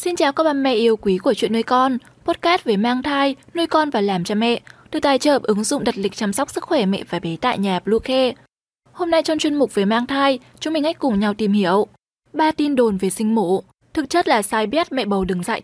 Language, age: Vietnamese, 10-29